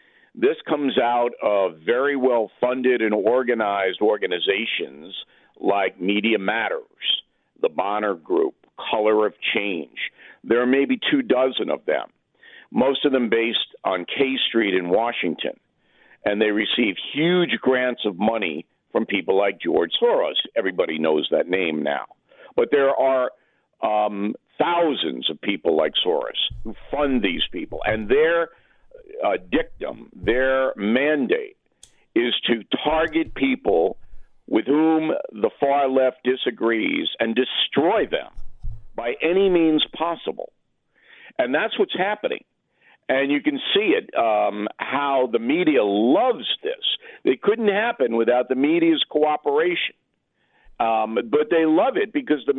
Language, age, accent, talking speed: English, 50-69, American, 130 wpm